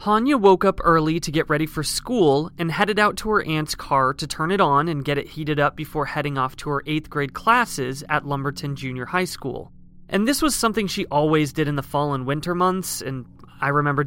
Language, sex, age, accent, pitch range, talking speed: English, male, 20-39, American, 140-185 Hz, 230 wpm